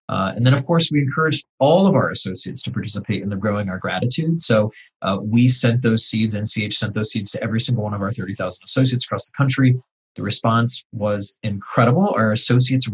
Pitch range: 105-120 Hz